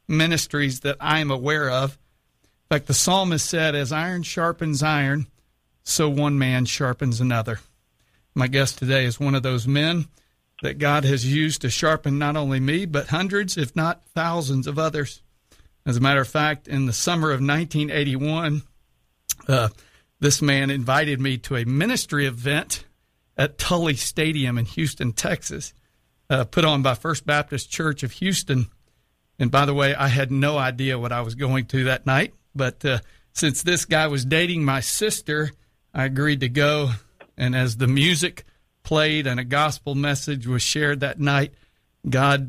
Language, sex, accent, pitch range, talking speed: English, male, American, 130-155 Hz, 170 wpm